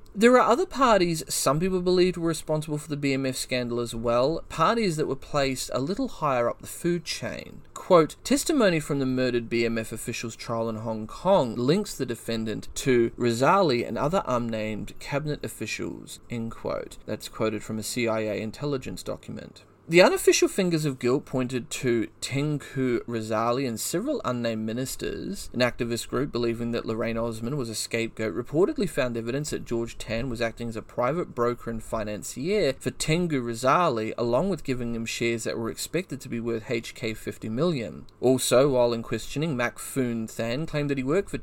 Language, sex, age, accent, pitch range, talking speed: English, male, 30-49, Australian, 115-145 Hz, 175 wpm